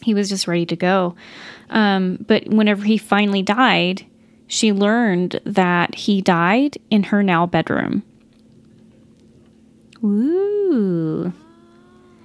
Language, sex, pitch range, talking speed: English, female, 185-235 Hz, 110 wpm